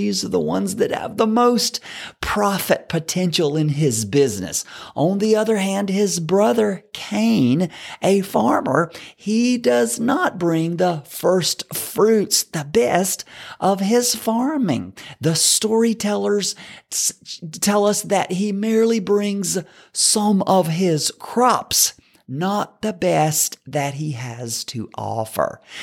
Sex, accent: male, American